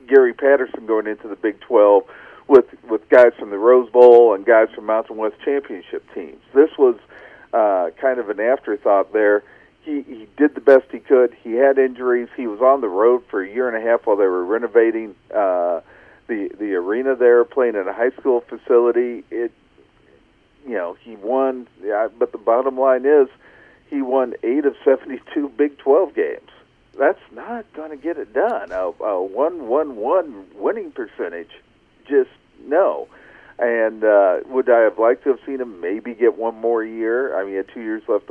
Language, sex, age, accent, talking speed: English, male, 50-69, American, 190 wpm